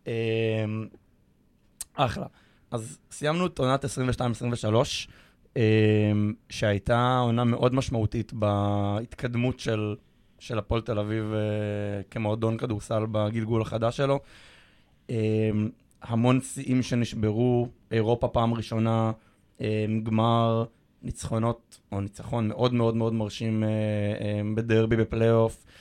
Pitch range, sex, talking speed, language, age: 110-125 Hz, male, 100 wpm, Hebrew, 20-39